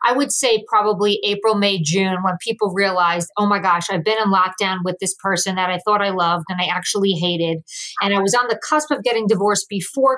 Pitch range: 190-220 Hz